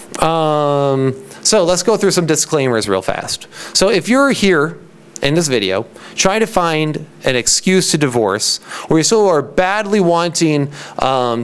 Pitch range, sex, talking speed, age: 125-165 Hz, male, 155 wpm, 30-49